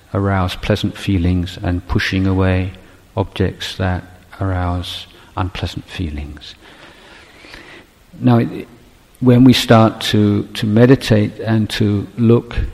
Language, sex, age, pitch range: Thai, male, 50-69, 95-110 Hz